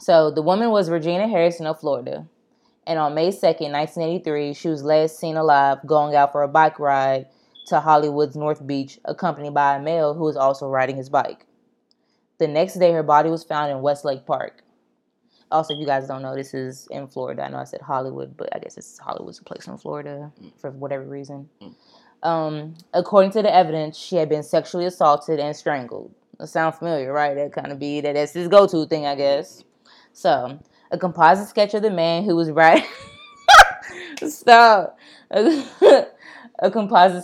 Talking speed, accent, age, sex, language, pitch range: 185 wpm, American, 20-39, female, English, 145-170 Hz